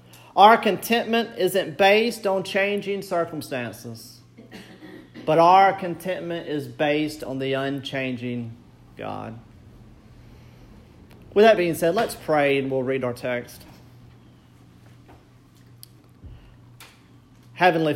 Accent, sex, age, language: American, male, 40-59, English